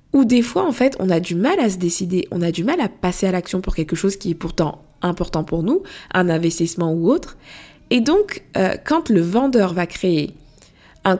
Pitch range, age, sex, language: 175-235 Hz, 20-39, female, French